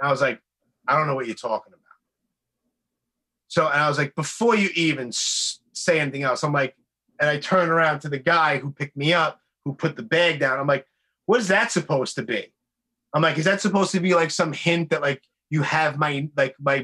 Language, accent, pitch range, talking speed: English, American, 155-215 Hz, 230 wpm